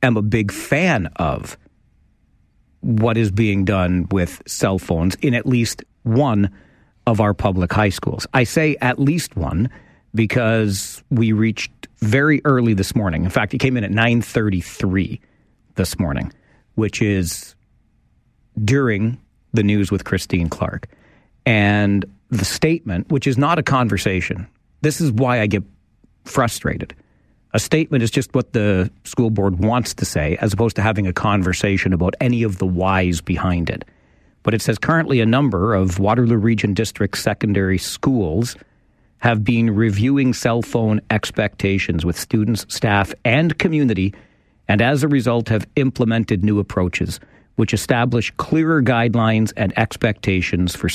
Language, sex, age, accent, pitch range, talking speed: English, male, 40-59, American, 95-120 Hz, 150 wpm